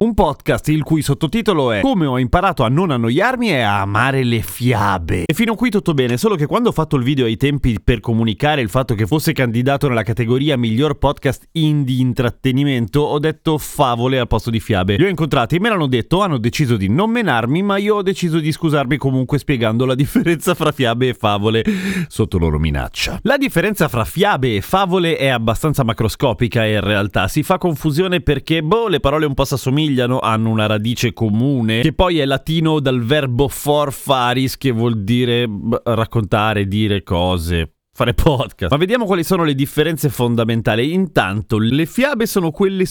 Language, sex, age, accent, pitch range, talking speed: Italian, male, 30-49, native, 120-160 Hz, 185 wpm